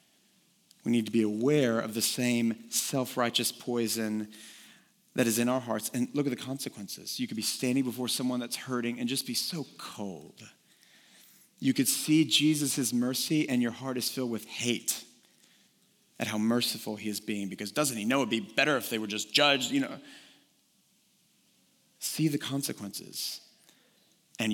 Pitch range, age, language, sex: 115-150 Hz, 40-59, English, male